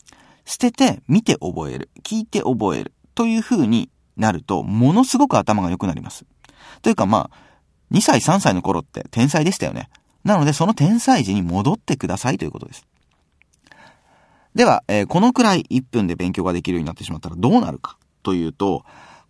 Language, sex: Japanese, male